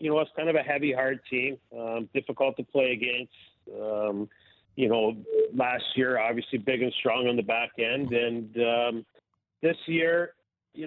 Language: English